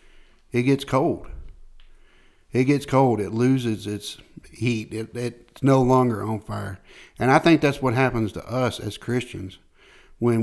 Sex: male